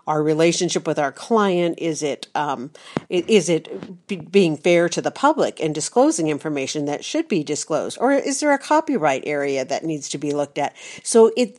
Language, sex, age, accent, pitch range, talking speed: English, female, 50-69, American, 155-200 Hz, 185 wpm